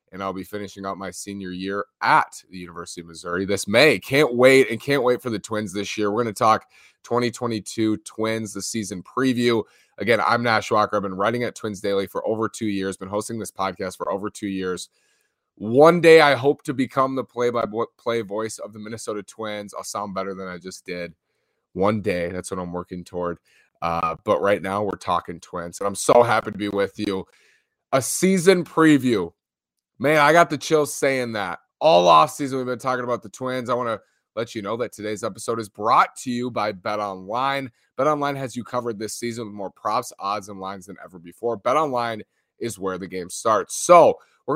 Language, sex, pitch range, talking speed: English, male, 100-130 Hz, 210 wpm